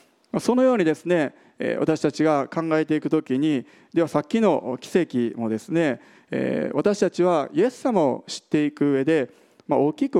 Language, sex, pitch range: Japanese, male, 135-175 Hz